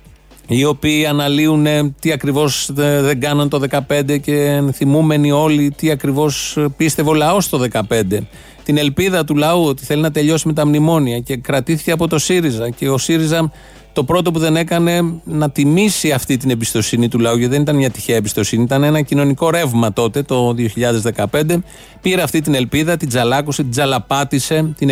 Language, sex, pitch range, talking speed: Greek, male, 135-160 Hz, 175 wpm